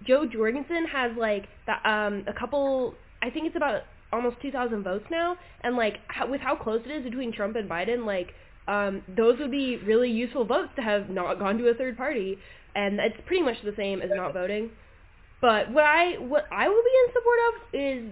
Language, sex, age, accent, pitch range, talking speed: English, female, 10-29, American, 195-255 Hz, 200 wpm